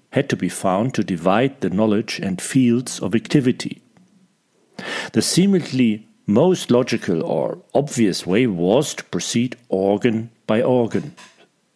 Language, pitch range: German, 105-140 Hz